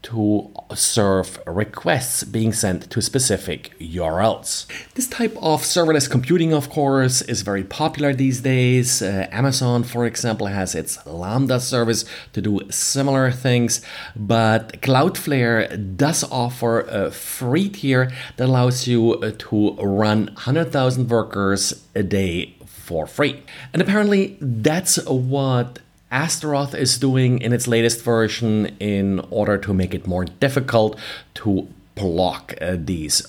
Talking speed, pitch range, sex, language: 130 wpm, 100-130 Hz, male, English